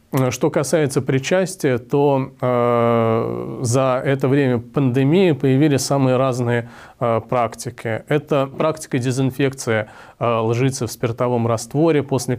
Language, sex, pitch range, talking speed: Russian, male, 120-140 Hz, 110 wpm